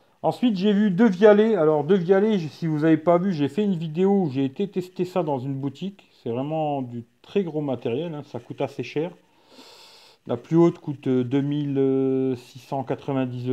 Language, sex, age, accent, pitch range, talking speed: English, male, 50-69, French, 135-175 Hz, 180 wpm